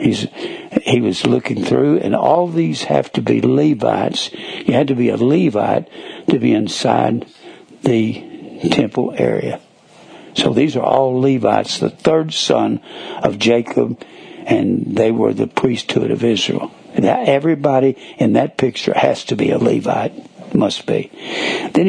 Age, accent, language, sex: 60-79, American, English, male